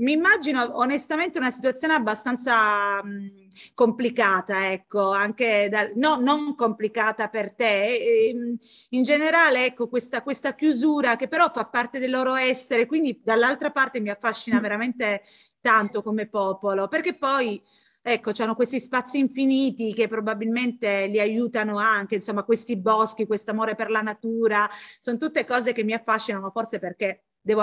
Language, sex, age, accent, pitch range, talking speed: Italian, female, 30-49, native, 205-255 Hz, 150 wpm